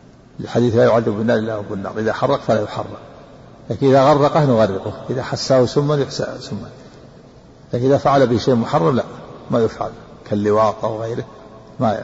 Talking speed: 160 wpm